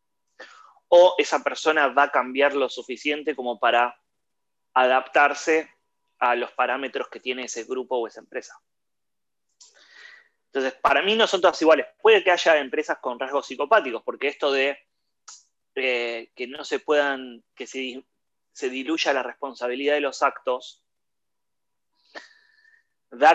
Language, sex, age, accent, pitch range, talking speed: English, male, 20-39, Argentinian, 125-155 Hz, 135 wpm